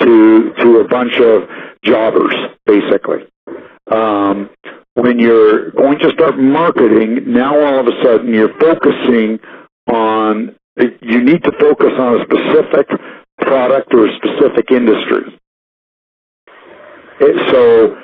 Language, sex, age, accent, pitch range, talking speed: English, male, 60-79, American, 115-145 Hz, 115 wpm